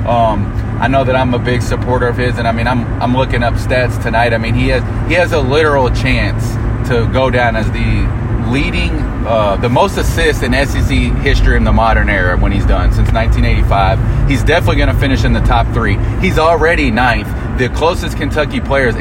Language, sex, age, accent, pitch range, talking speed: English, male, 30-49, American, 110-125 Hz, 210 wpm